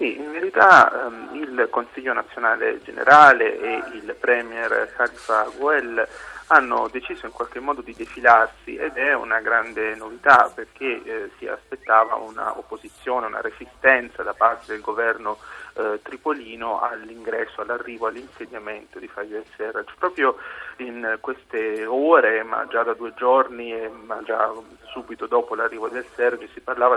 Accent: native